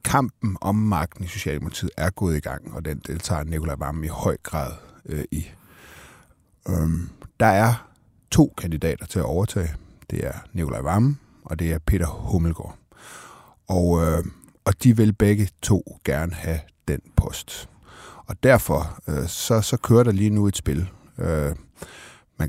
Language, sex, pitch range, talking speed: Danish, male, 80-105 Hz, 160 wpm